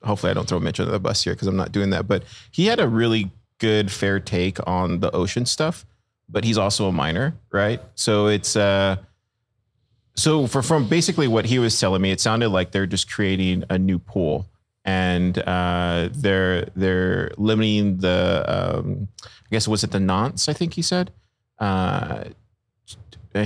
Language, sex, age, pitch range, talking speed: English, male, 30-49, 95-115 Hz, 180 wpm